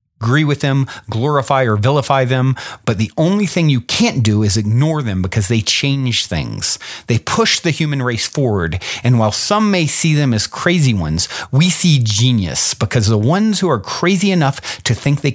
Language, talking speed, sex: English, 190 wpm, male